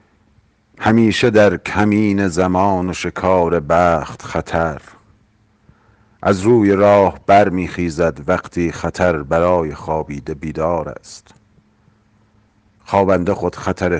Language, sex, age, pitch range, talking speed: Persian, male, 50-69, 85-105 Hz, 90 wpm